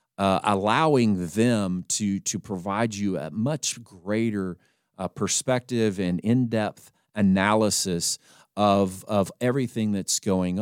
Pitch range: 95-125 Hz